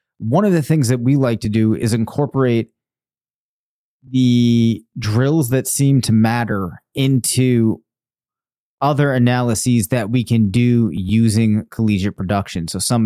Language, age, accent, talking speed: English, 30-49, American, 135 wpm